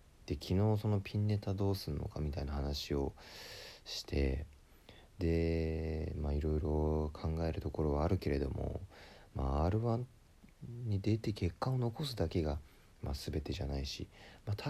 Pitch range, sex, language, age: 75-105 Hz, male, Japanese, 40-59